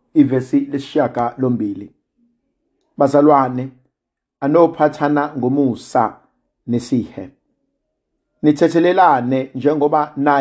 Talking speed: 70 wpm